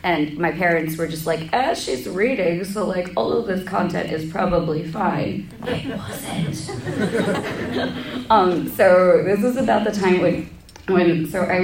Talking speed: 165 wpm